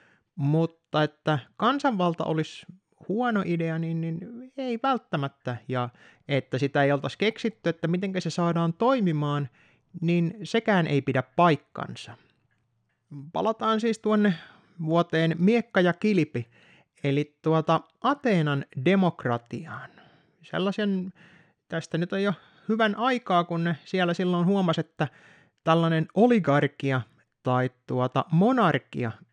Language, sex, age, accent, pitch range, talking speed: Finnish, male, 30-49, native, 140-195 Hz, 100 wpm